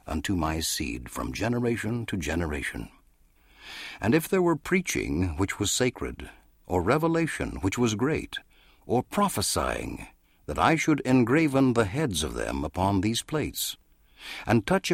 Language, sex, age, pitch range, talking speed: English, male, 60-79, 80-130 Hz, 140 wpm